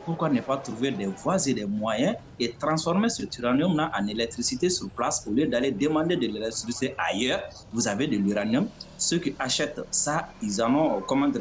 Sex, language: male, French